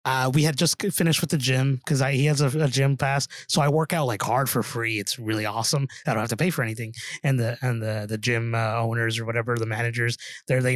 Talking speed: 260 wpm